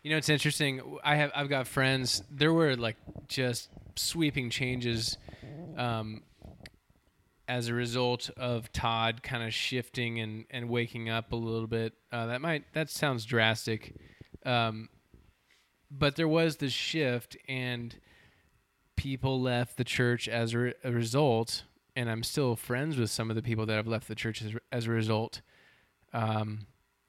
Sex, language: male, English